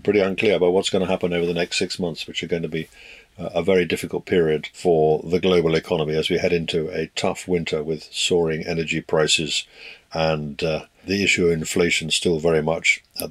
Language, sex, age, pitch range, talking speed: English, male, 50-69, 85-105 Hz, 210 wpm